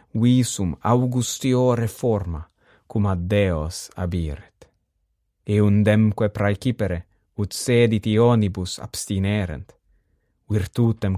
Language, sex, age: English, male, 30-49